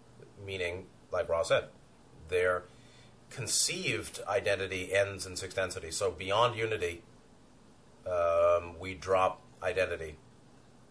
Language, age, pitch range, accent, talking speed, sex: English, 30-49, 90-130 Hz, American, 100 wpm, male